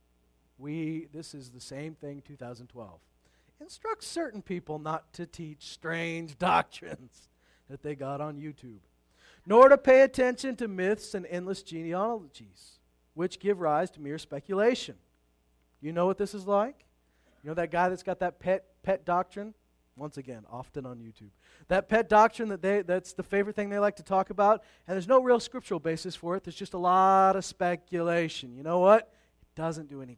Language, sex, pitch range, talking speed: English, male, 135-210 Hz, 180 wpm